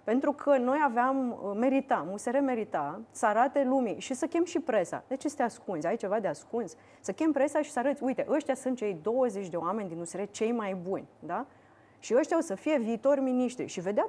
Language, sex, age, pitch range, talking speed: Romanian, female, 30-49, 190-270 Hz, 220 wpm